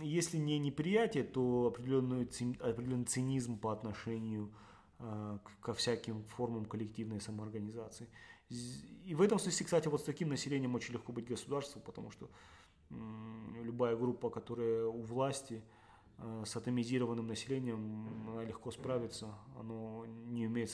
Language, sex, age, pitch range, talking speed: Russian, male, 30-49, 110-125 Hz, 120 wpm